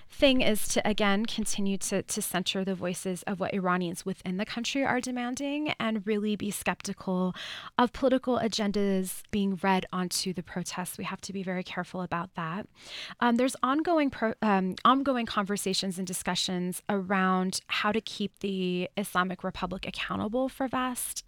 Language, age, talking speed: English, 20-39, 155 wpm